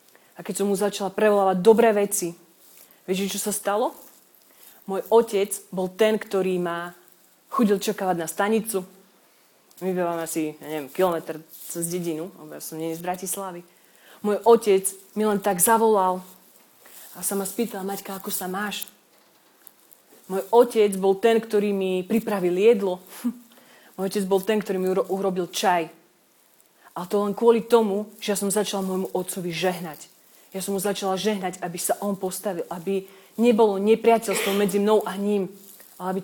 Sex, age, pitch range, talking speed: female, 30-49, 180-210 Hz, 155 wpm